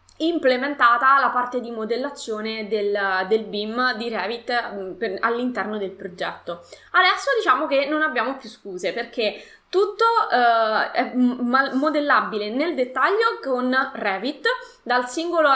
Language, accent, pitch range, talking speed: Italian, native, 225-295 Hz, 120 wpm